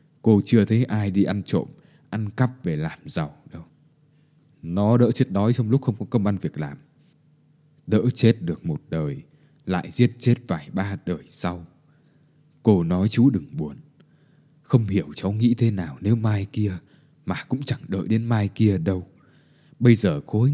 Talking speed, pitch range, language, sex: 180 wpm, 105-150 Hz, Vietnamese, male